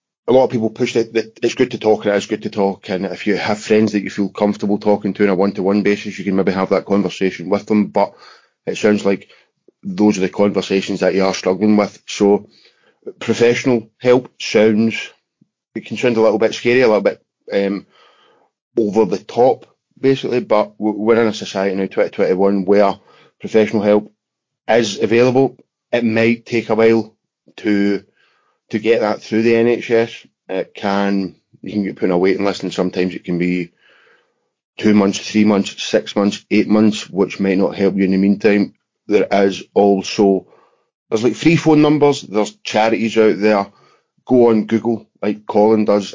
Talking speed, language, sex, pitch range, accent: 190 wpm, English, male, 100-110 Hz, British